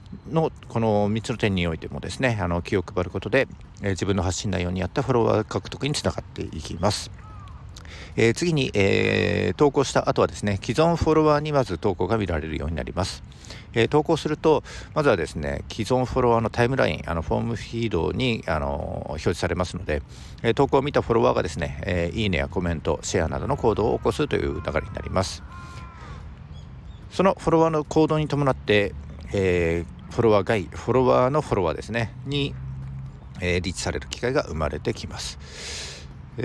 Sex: male